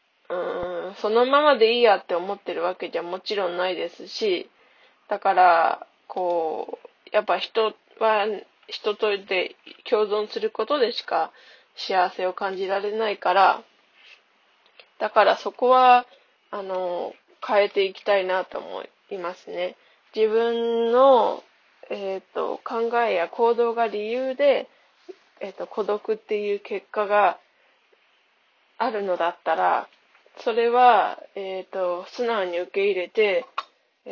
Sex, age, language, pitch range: female, 20-39, Japanese, 190-275 Hz